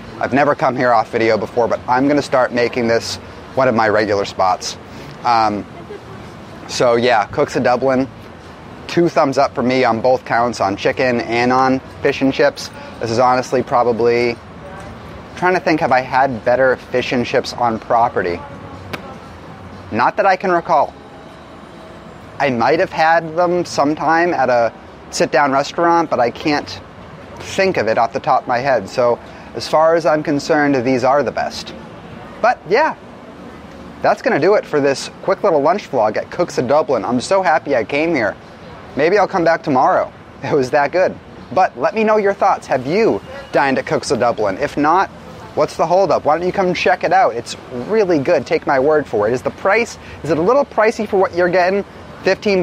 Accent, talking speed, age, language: American, 195 wpm, 30-49, English